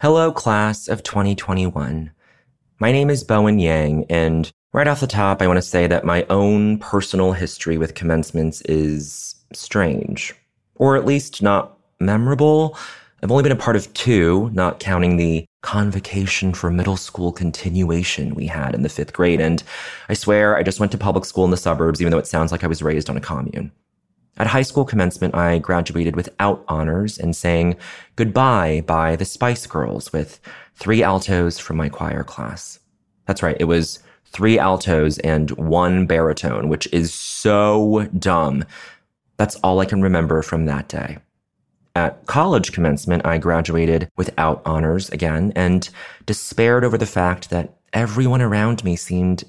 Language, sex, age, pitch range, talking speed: English, male, 30-49, 85-105 Hz, 165 wpm